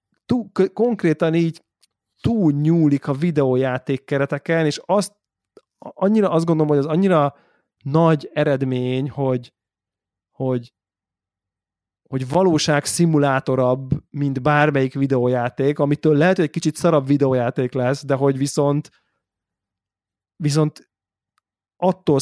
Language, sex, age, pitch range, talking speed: Hungarian, male, 30-49, 130-150 Hz, 105 wpm